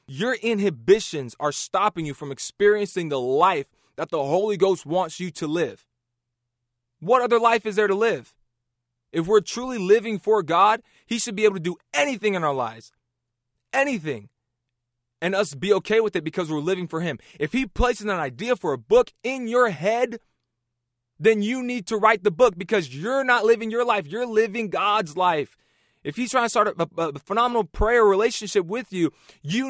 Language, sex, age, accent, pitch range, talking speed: English, male, 20-39, American, 170-225 Hz, 185 wpm